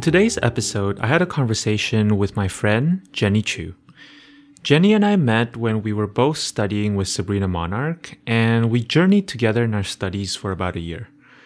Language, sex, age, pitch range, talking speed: English, male, 30-49, 105-145 Hz, 185 wpm